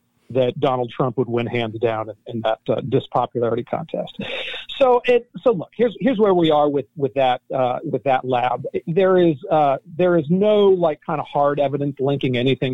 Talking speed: 200 wpm